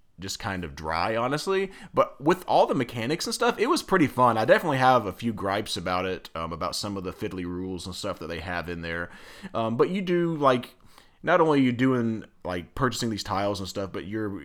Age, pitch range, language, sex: 30-49, 80-100 Hz, English, male